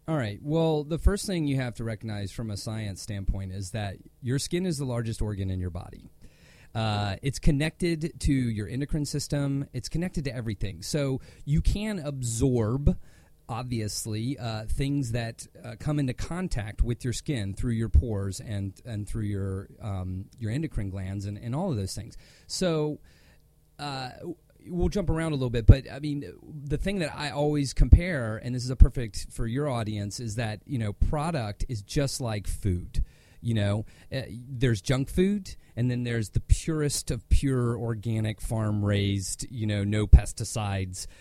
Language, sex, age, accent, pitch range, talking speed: English, male, 30-49, American, 100-135 Hz, 175 wpm